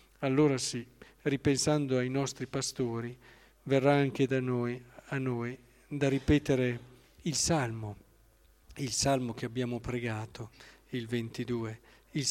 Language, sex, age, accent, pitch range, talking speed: Italian, male, 50-69, native, 120-140 Hz, 115 wpm